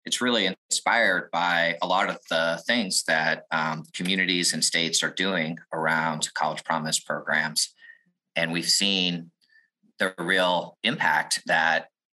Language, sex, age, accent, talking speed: English, male, 30-49, American, 135 wpm